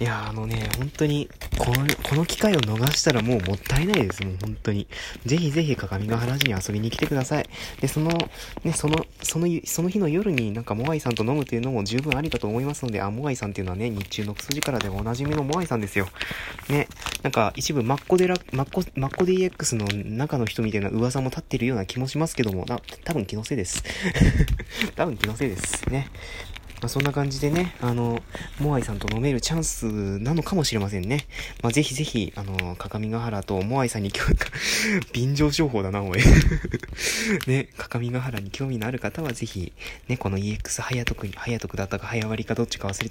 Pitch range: 105-145 Hz